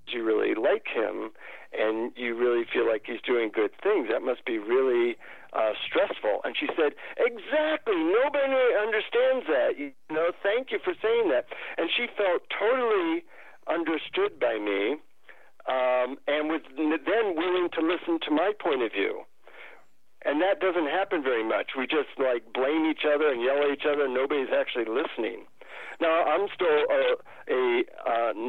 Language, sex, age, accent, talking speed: English, male, 60-79, American, 160 wpm